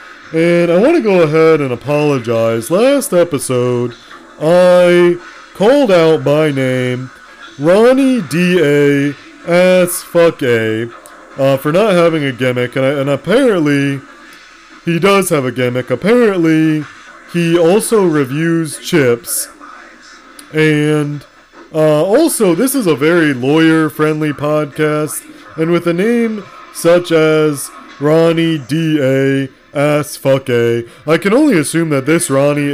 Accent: American